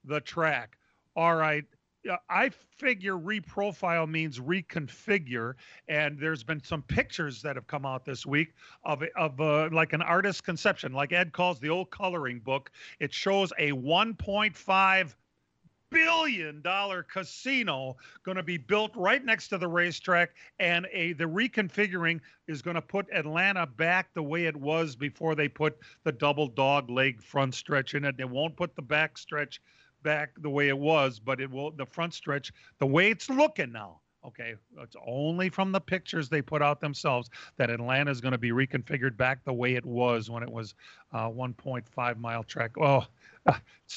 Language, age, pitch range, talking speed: English, 40-59, 135-180 Hz, 175 wpm